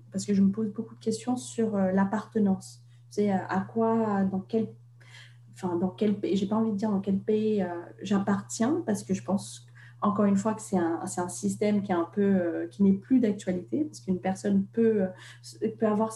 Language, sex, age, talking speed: French, female, 30-49, 220 wpm